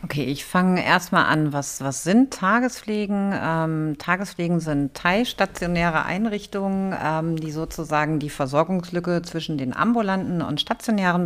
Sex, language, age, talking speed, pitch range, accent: female, German, 50-69, 130 wpm, 160-195 Hz, German